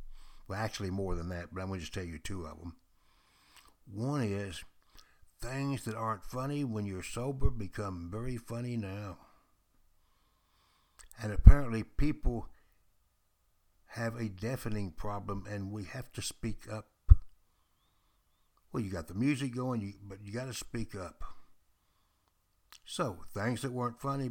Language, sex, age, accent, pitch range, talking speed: English, male, 60-79, American, 90-125 Hz, 145 wpm